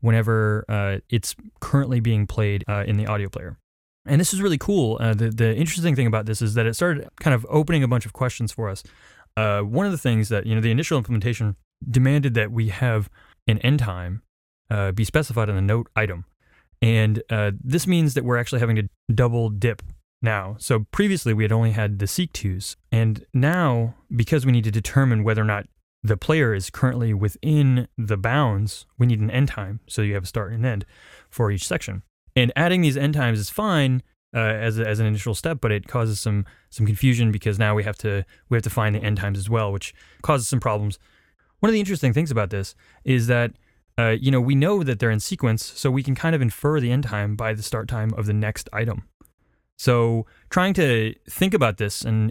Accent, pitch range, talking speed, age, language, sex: American, 105-130 Hz, 225 wpm, 20-39, English, male